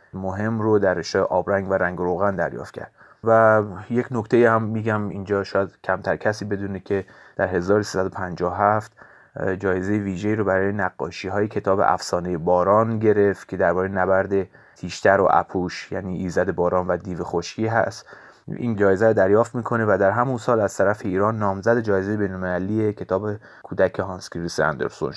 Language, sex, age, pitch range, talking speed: Persian, male, 30-49, 95-110 Hz, 160 wpm